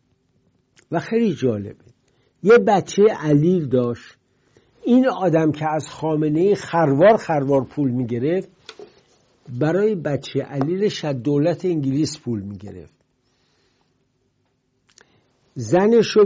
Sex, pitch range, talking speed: male, 125-160 Hz, 90 wpm